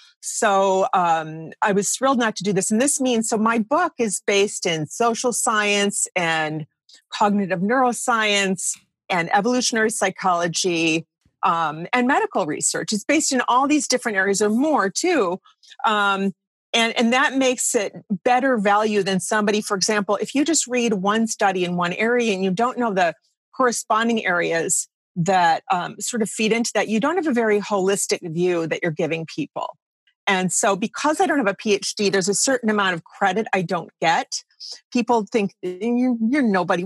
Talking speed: 175 wpm